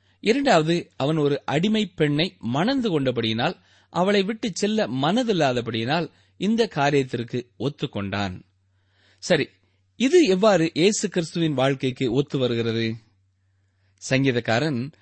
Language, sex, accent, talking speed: Tamil, male, native, 90 wpm